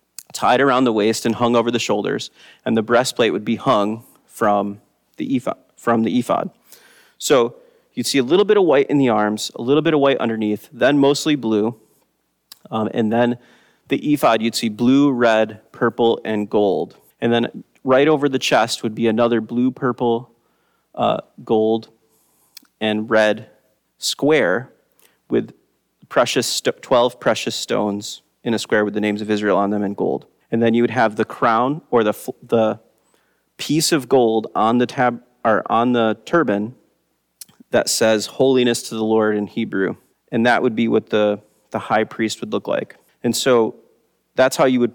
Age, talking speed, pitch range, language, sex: 30-49, 180 wpm, 110-130 Hz, English, male